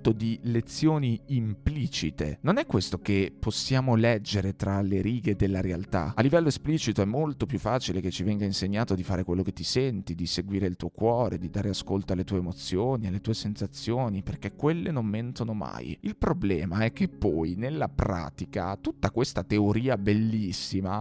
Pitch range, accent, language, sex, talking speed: 100-130 Hz, native, Italian, male, 175 wpm